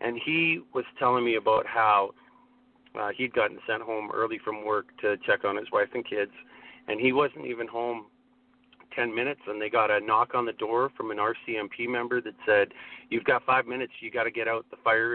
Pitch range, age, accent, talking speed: 115-155 Hz, 40-59, American, 215 wpm